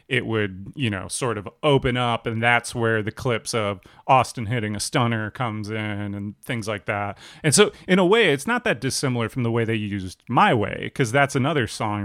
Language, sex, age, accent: English, male, 30-49, American